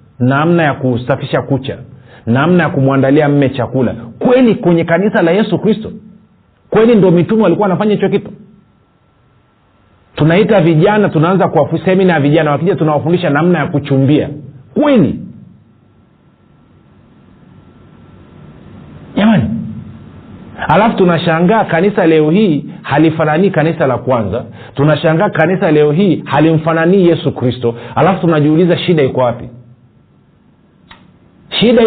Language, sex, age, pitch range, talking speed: Swahili, male, 40-59, 130-175 Hz, 115 wpm